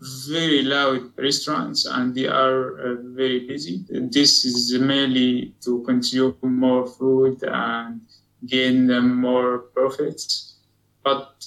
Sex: male